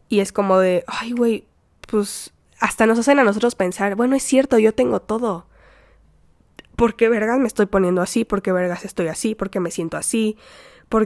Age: 10-29